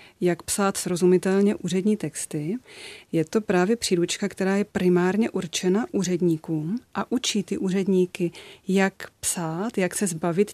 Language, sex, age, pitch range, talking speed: Czech, female, 30-49, 175-200 Hz, 130 wpm